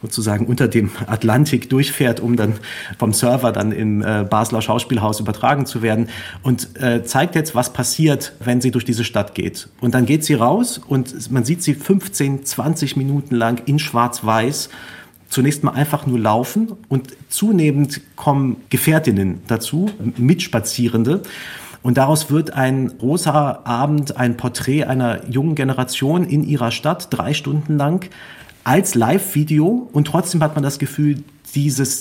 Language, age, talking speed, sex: German, 40-59, 150 wpm, male